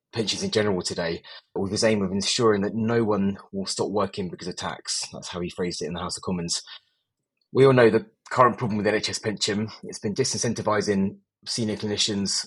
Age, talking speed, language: 30-49, 205 wpm, English